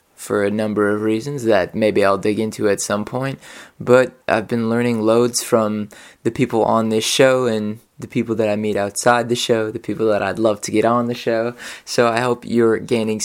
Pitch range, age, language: 110-130 Hz, 20-39, English